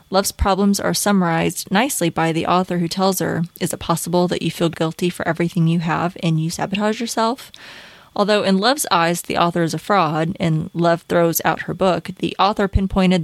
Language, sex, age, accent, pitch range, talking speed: English, female, 20-39, American, 165-195 Hz, 200 wpm